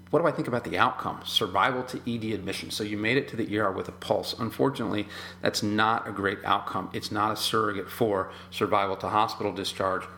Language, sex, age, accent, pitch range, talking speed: English, male, 40-59, American, 95-120 Hz, 210 wpm